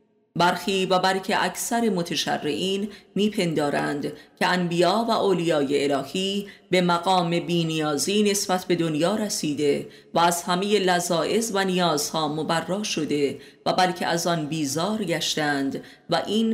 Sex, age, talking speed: female, 30-49, 125 wpm